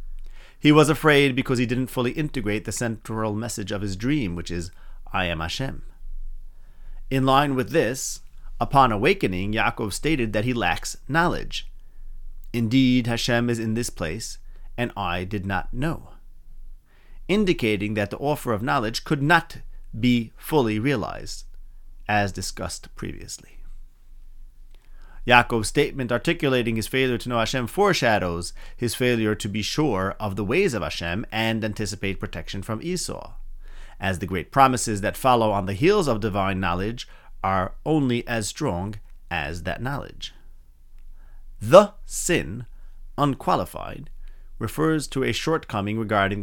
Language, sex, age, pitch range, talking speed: English, male, 30-49, 100-130 Hz, 140 wpm